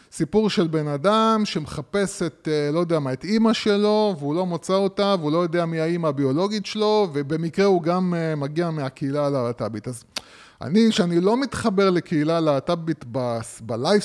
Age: 30-49